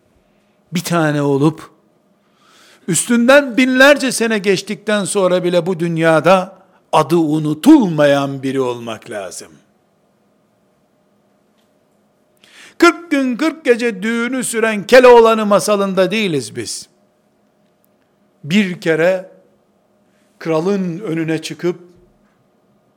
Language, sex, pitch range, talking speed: Turkish, male, 155-220 Hz, 80 wpm